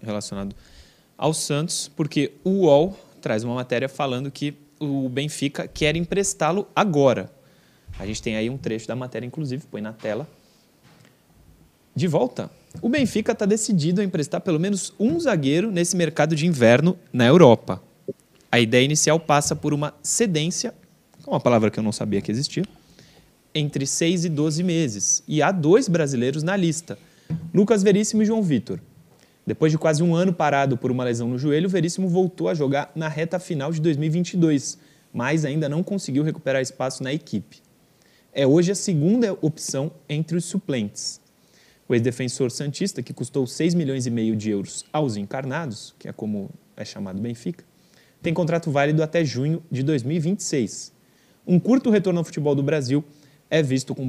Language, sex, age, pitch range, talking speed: Portuguese, male, 20-39, 130-170 Hz, 165 wpm